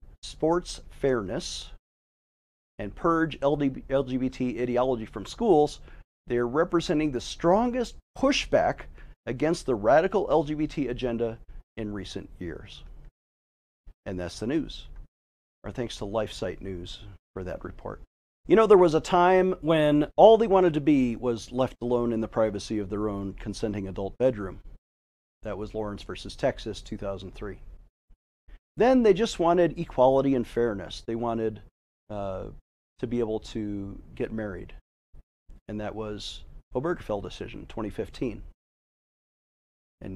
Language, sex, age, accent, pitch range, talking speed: English, male, 40-59, American, 100-135 Hz, 130 wpm